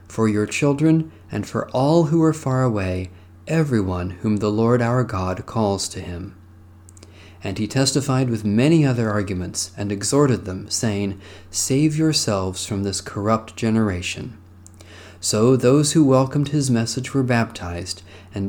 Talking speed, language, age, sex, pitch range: 145 wpm, English, 40-59, male, 95-130 Hz